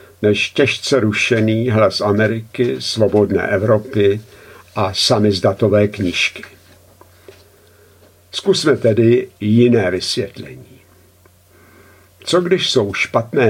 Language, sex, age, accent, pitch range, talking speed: Czech, male, 60-79, native, 100-125 Hz, 80 wpm